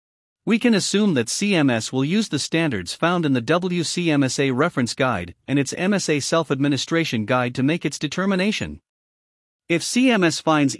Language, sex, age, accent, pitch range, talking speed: English, male, 50-69, American, 125-180 Hz, 150 wpm